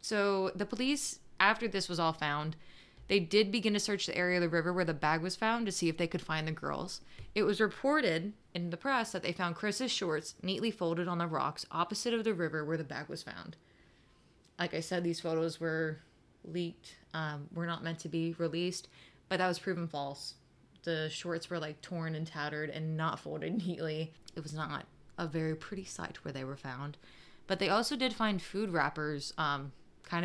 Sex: female